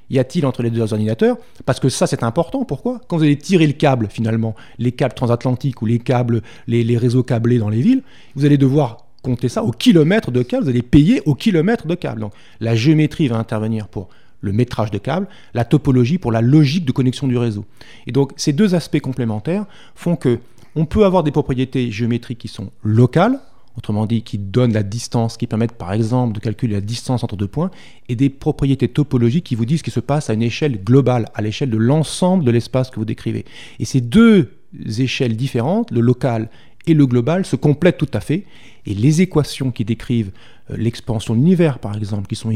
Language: French